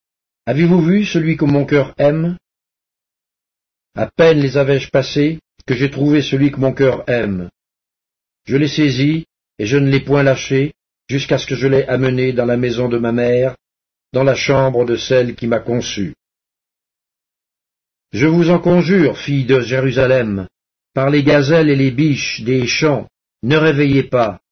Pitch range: 120-145 Hz